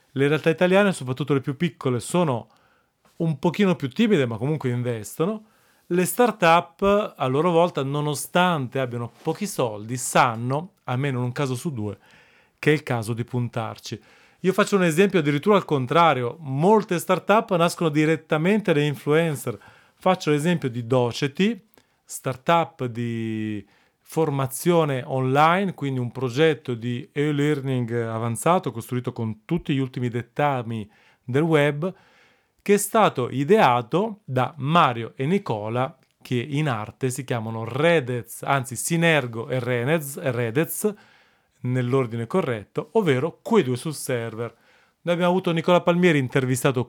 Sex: male